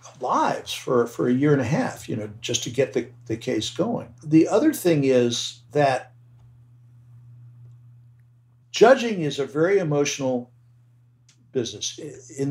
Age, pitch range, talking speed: 60-79, 120-150 Hz, 140 wpm